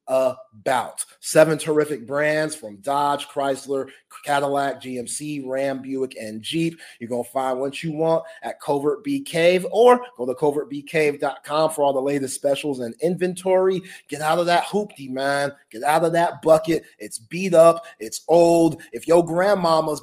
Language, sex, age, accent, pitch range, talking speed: English, male, 30-49, American, 135-165 Hz, 160 wpm